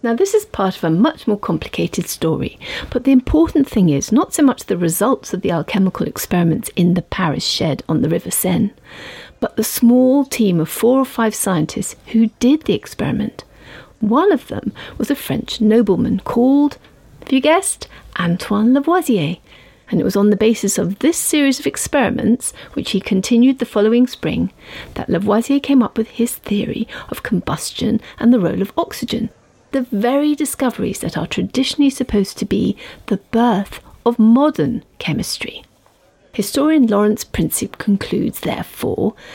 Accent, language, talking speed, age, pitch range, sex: British, English, 165 wpm, 40-59, 205-270 Hz, female